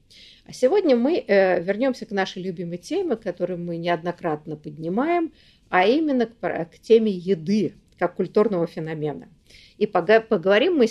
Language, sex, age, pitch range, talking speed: Russian, female, 50-69, 175-235 Hz, 125 wpm